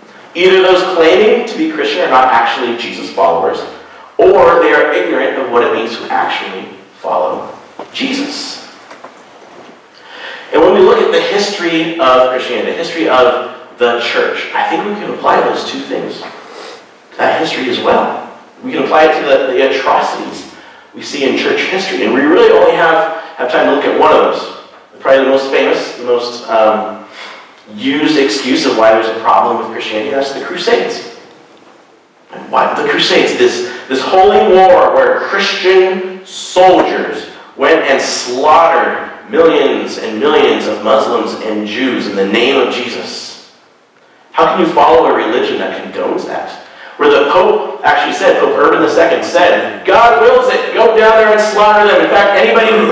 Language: English